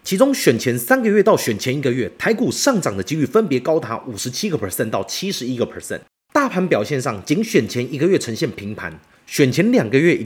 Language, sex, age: Chinese, male, 30-49